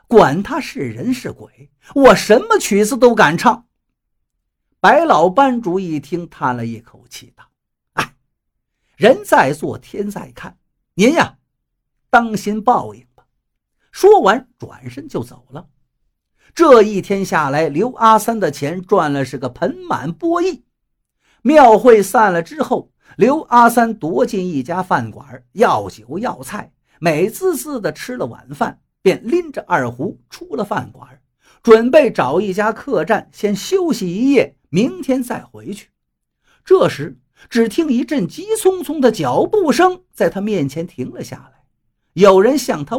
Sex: male